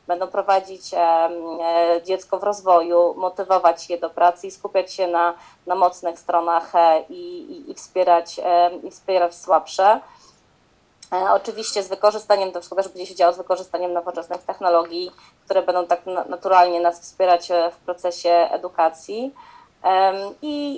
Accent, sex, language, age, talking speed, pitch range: native, female, Polish, 20-39, 135 wpm, 175-200 Hz